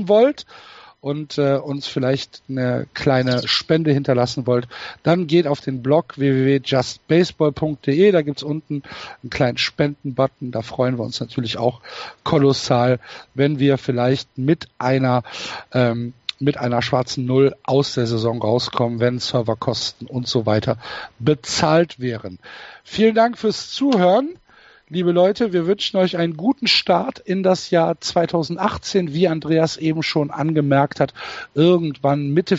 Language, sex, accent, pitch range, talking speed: German, male, German, 125-165 Hz, 140 wpm